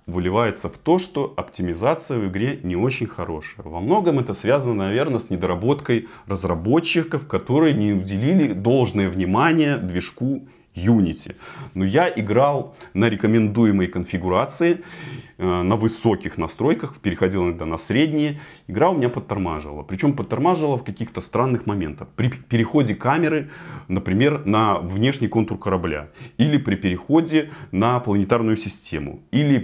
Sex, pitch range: male, 95-140 Hz